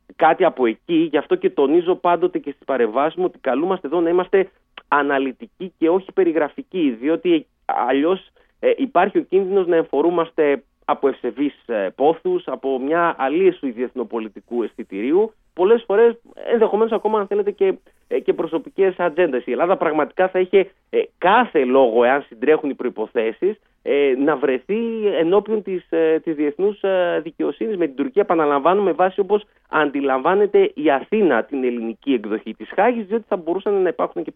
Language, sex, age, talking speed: Greek, male, 30-49, 145 wpm